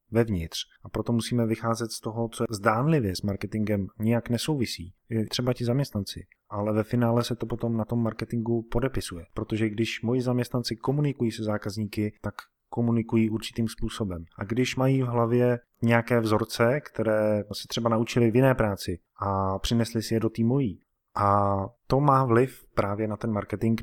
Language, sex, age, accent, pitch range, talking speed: Czech, male, 20-39, native, 105-120 Hz, 170 wpm